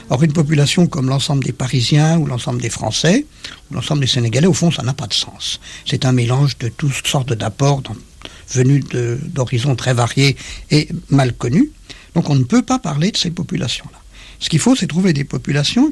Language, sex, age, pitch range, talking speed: French, male, 60-79, 130-170 Hz, 205 wpm